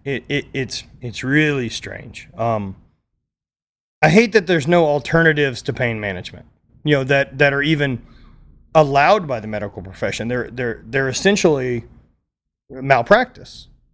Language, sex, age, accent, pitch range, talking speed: English, male, 30-49, American, 115-155 Hz, 140 wpm